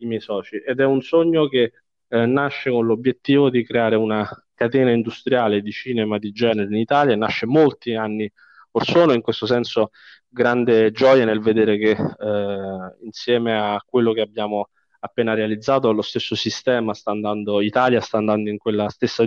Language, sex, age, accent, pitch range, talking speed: Italian, male, 20-39, native, 110-130 Hz, 170 wpm